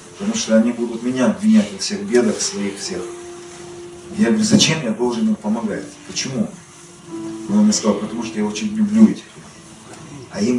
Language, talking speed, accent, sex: Russian, 175 wpm, native, male